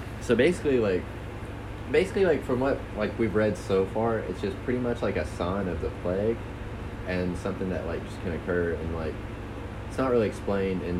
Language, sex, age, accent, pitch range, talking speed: English, male, 20-39, American, 95-115 Hz, 195 wpm